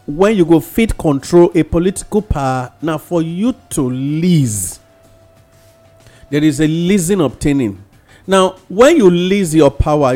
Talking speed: 140 wpm